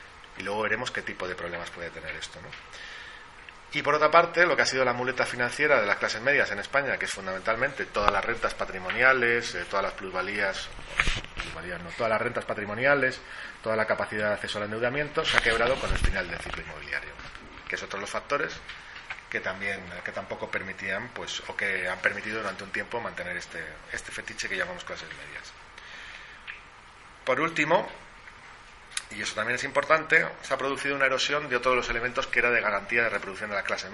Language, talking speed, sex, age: Spanish, 205 wpm, male, 30-49